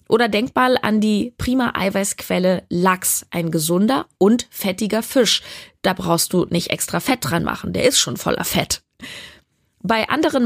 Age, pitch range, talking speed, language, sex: 20-39, 180-215 Hz, 160 wpm, German, female